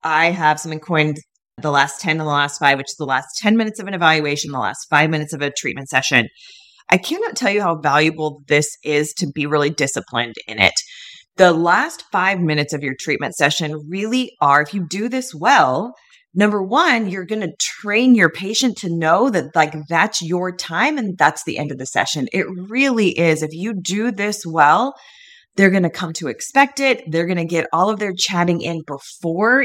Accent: American